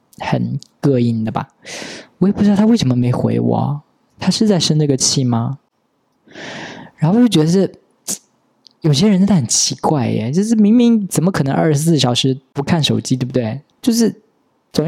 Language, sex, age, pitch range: Chinese, male, 20-39, 130-160 Hz